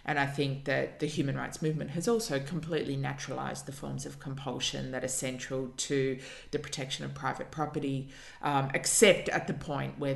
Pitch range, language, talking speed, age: 130-145 Hz, English, 185 wpm, 30-49